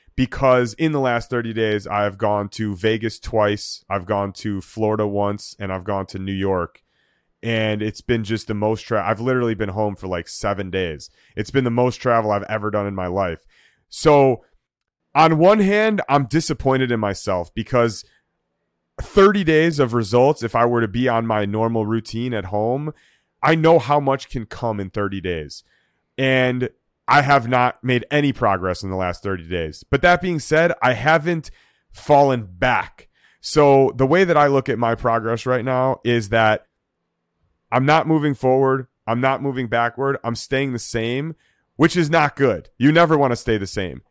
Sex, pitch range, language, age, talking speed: male, 105-145 Hz, English, 30-49, 185 wpm